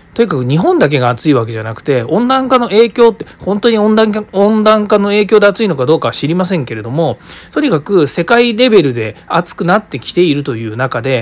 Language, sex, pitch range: Japanese, male, 130-210 Hz